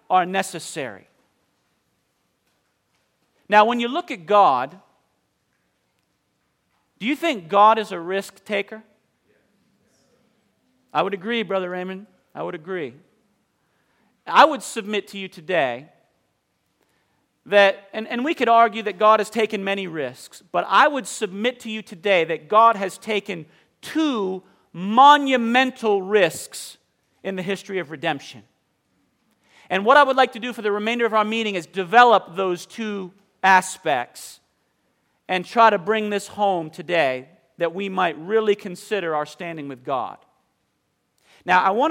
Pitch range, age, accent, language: 185-230 Hz, 40-59, American, English